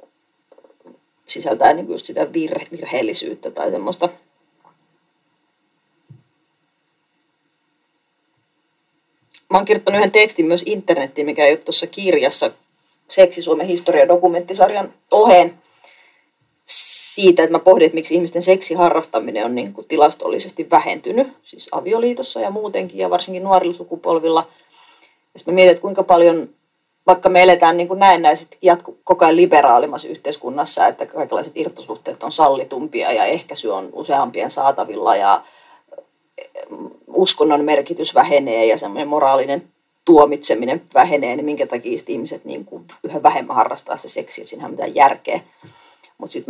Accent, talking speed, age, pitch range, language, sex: native, 125 wpm, 30-49, 160-200 Hz, Finnish, female